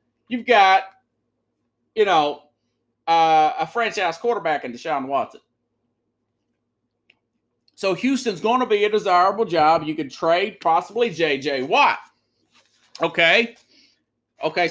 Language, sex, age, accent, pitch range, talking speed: English, male, 30-49, American, 140-210 Hz, 110 wpm